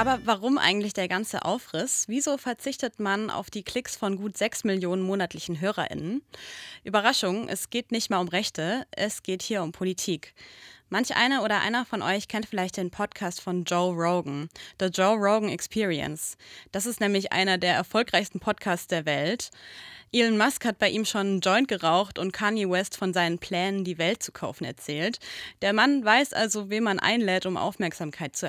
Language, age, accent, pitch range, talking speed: German, 20-39, German, 180-220 Hz, 180 wpm